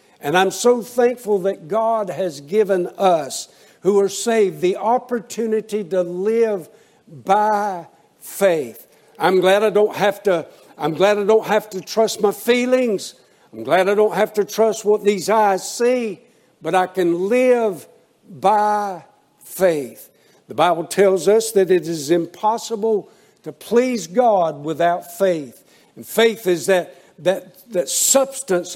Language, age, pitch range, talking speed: English, 60-79, 180-230 Hz, 135 wpm